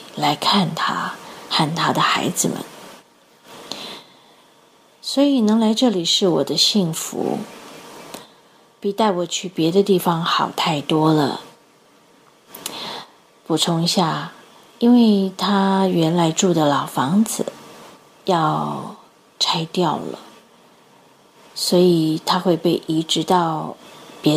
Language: Chinese